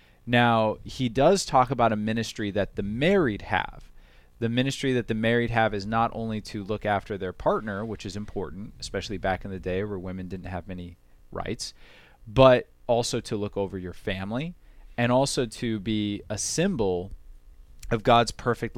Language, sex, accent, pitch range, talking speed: English, male, American, 95-115 Hz, 175 wpm